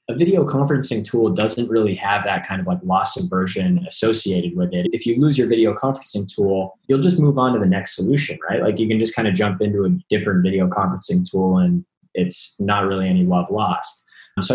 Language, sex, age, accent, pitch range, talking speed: English, male, 20-39, American, 100-130 Hz, 220 wpm